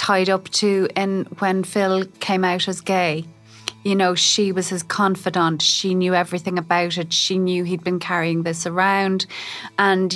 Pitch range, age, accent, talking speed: 165-195 Hz, 30-49, Irish, 170 wpm